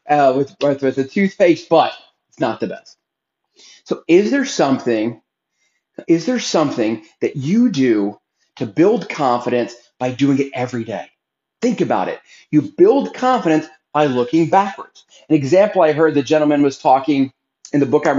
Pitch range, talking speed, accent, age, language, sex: 125-180 Hz, 160 wpm, American, 40-59, English, male